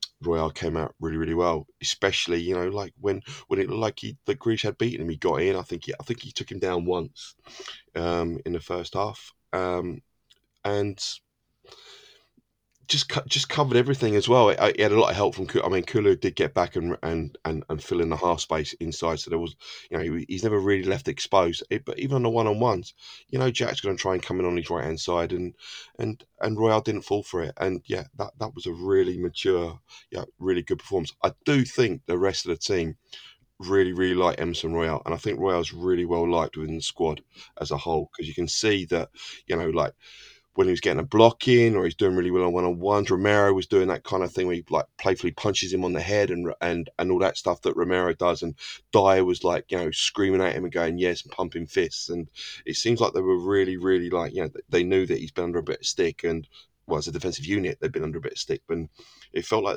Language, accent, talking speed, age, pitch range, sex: English, British, 250 wpm, 20-39, 85-115 Hz, male